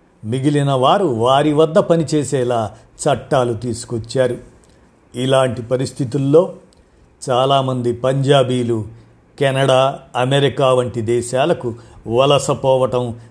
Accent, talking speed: native, 75 wpm